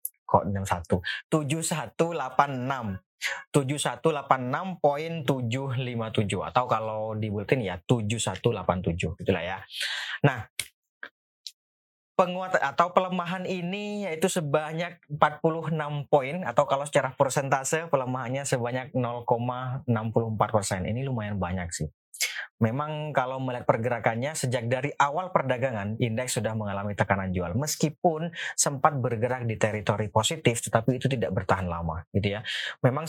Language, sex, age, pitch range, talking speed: Indonesian, male, 20-39, 110-140 Hz, 105 wpm